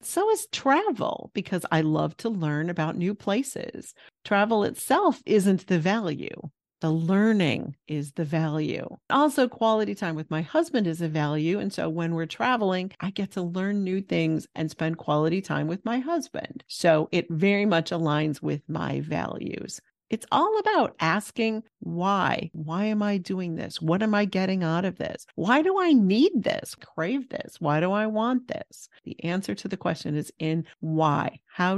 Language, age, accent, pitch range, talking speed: English, 50-69, American, 160-220 Hz, 175 wpm